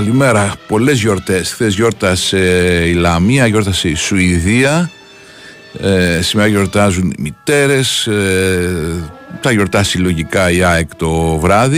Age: 60-79